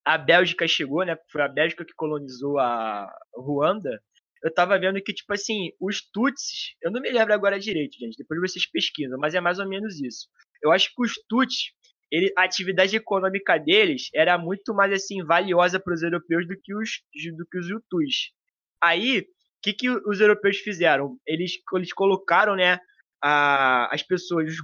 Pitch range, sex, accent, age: 165-215 Hz, male, Brazilian, 20-39